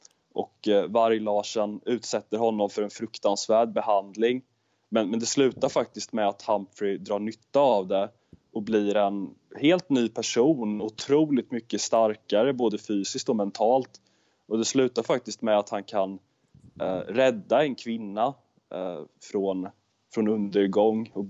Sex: male